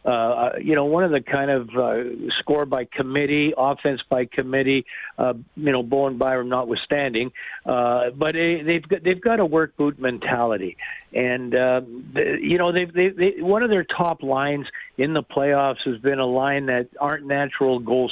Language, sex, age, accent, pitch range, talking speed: English, male, 60-79, American, 130-170 Hz, 180 wpm